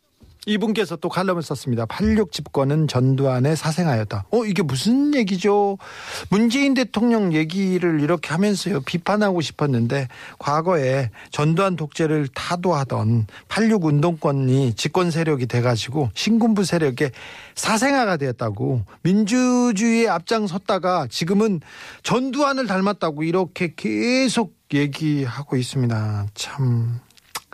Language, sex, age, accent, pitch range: Korean, male, 40-59, native, 140-205 Hz